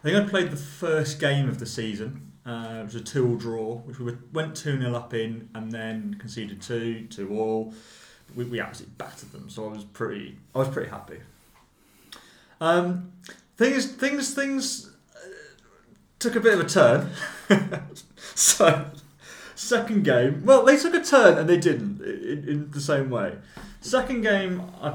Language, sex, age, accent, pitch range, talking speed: English, male, 30-49, British, 120-170 Hz, 170 wpm